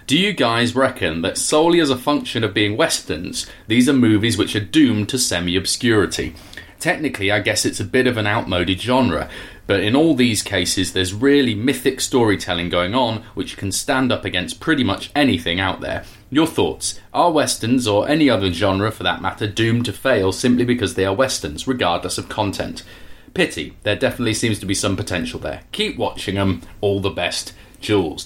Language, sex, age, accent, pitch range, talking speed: English, male, 30-49, British, 95-120 Hz, 190 wpm